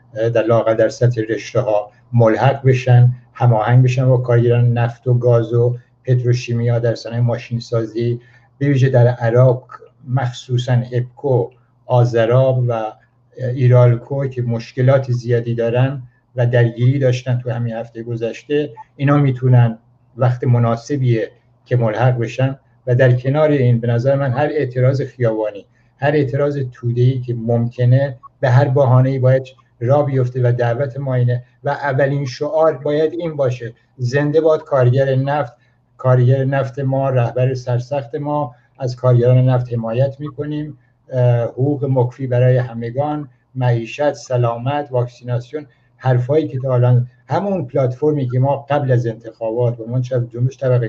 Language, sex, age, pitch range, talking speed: Persian, male, 60-79, 120-135 Hz, 135 wpm